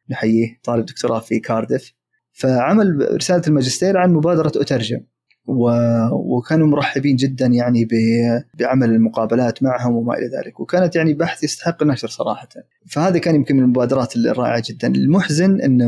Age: 20-39